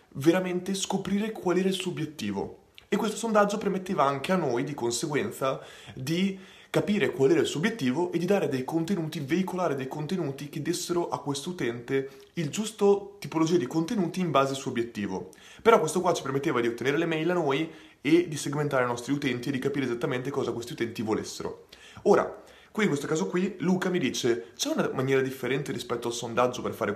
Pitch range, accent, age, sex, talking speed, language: 130-175 Hz, native, 20-39, male, 200 wpm, Italian